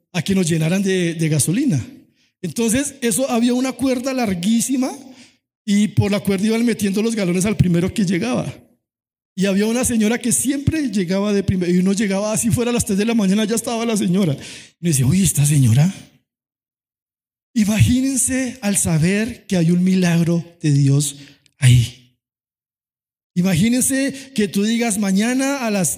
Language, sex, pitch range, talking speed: Spanish, male, 190-240 Hz, 165 wpm